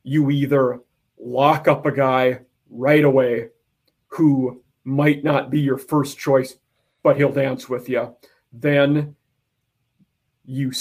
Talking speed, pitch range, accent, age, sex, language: 120 wpm, 130-145 Hz, American, 40-59, male, English